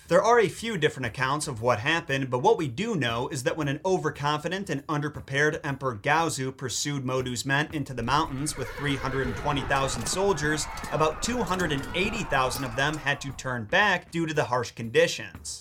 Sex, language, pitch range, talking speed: male, English, 135-160 Hz, 175 wpm